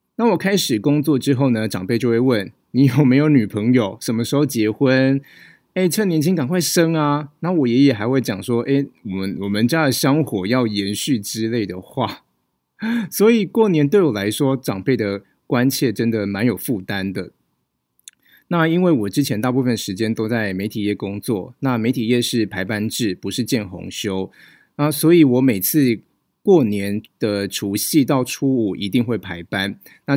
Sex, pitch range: male, 110-150 Hz